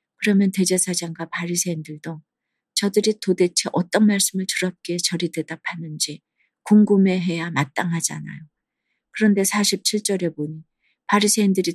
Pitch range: 175-205 Hz